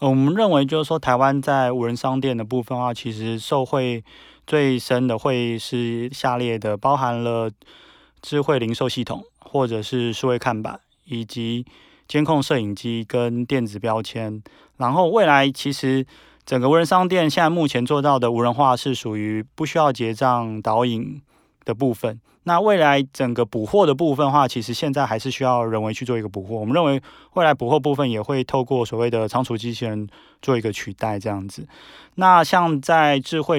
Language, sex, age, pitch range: Chinese, male, 20-39, 115-140 Hz